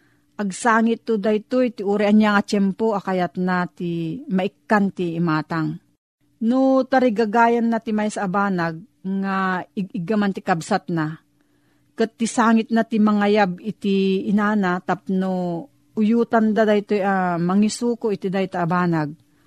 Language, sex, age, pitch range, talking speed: Filipino, female, 40-59, 175-220 Hz, 130 wpm